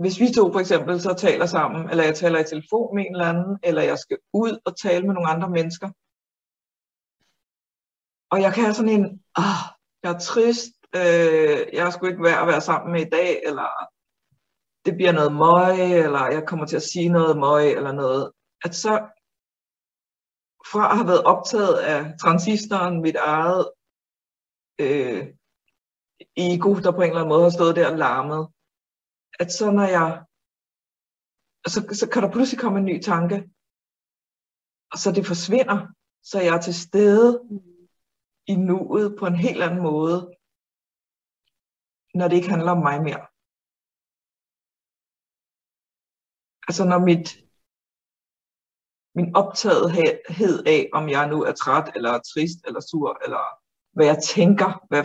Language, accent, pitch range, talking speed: Danish, native, 165-200 Hz, 155 wpm